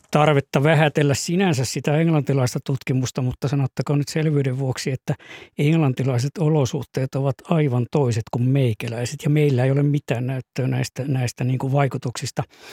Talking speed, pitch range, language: 135 wpm, 130-150 Hz, Finnish